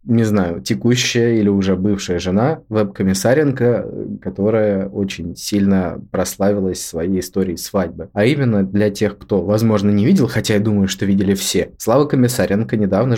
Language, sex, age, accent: Russian, male, 20-39, native